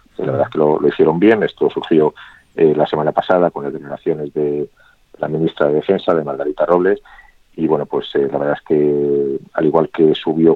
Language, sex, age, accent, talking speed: Spanish, male, 40-59, Spanish, 210 wpm